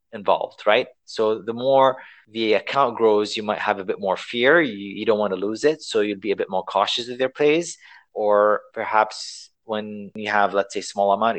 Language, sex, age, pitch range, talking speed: English, male, 30-49, 105-150 Hz, 215 wpm